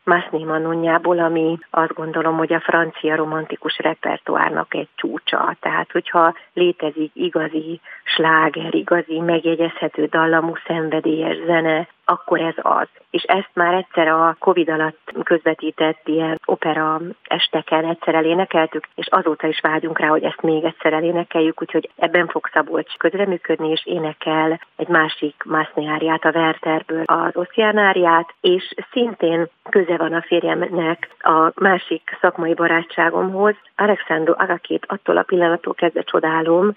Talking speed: 130 wpm